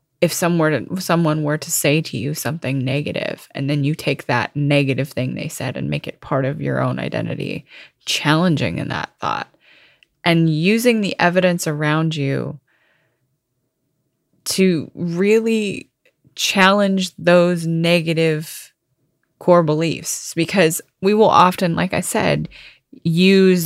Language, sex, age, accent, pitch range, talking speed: English, female, 20-39, American, 145-175 Hz, 130 wpm